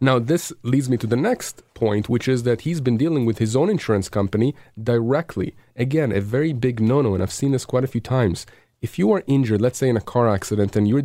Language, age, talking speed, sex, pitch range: English, 30-49, 245 wpm, male, 110-135 Hz